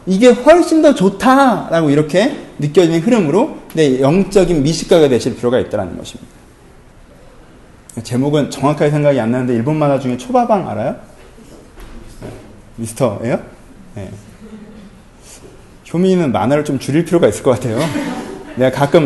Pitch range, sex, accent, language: 135-205 Hz, male, native, Korean